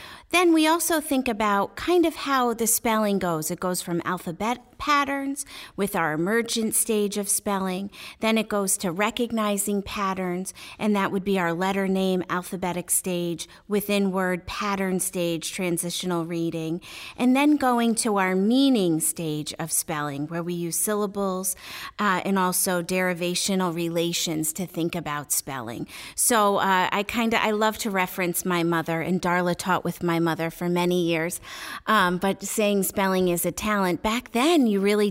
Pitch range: 170-210 Hz